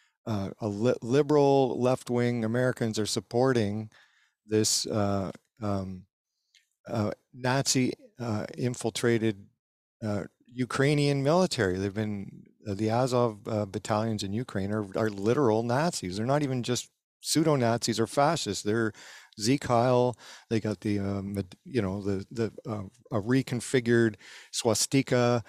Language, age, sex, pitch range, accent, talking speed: English, 50-69, male, 105-125 Hz, American, 125 wpm